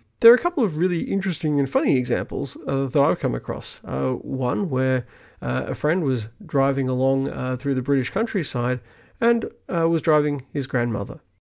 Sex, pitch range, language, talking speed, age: male, 130-200 Hz, English, 180 wpm, 40-59